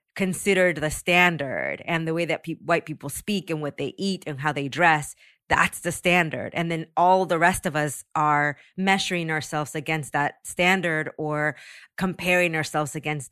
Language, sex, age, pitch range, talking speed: English, female, 20-39, 150-190 Hz, 165 wpm